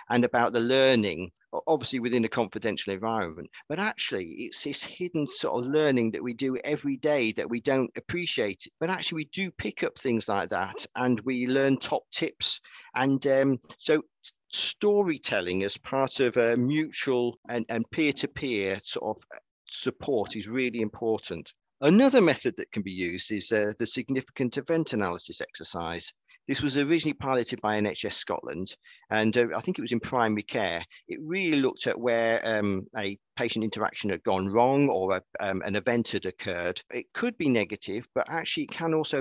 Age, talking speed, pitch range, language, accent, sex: 50-69, 175 wpm, 110-145 Hz, English, British, male